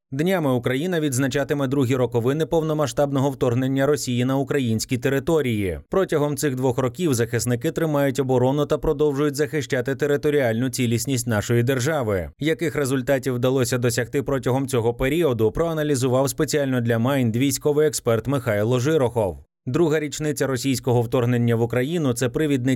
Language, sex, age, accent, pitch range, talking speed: Ukrainian, male, 30-49, native, 120-150 Hz, 130 wpm